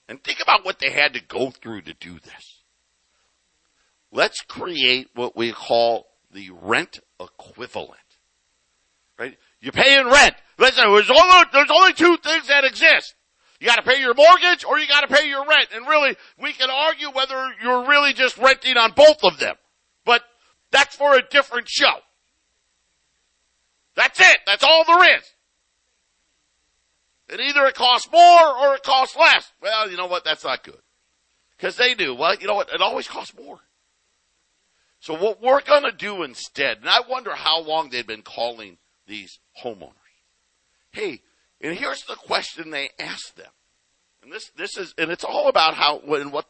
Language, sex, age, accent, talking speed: English, male, 50-69, American, 175 wpm